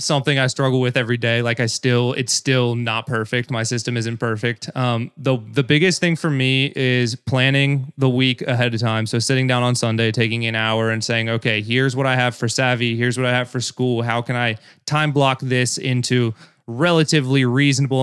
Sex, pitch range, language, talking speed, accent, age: male, 115-130 Hz, English, 210 wpm, American, 20-39